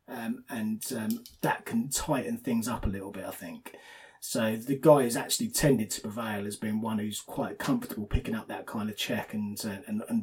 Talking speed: 215 wpm